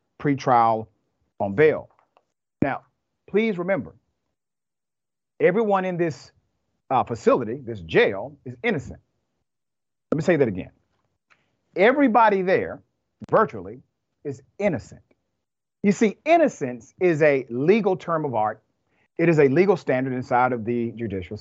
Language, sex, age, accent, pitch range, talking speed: English, male, 40-59, American, 125-200 Hz, 120 wpm